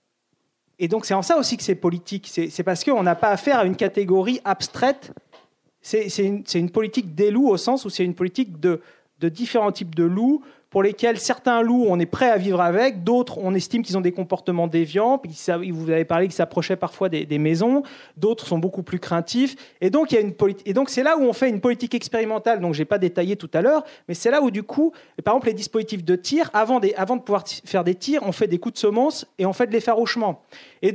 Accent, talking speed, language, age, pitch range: French, 250 wpm, French, 30-49, 185-250 Hz